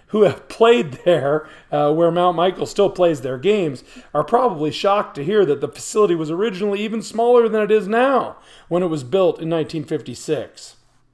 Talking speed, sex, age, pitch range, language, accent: 185 wpm, male, 40-59, 150-195 Hz, English, American